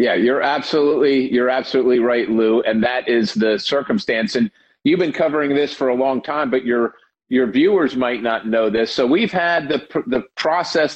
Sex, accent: male, American